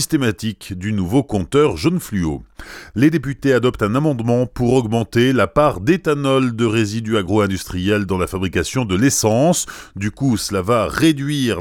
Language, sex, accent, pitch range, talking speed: French, male, French, 95-130 Hz, 145 wpm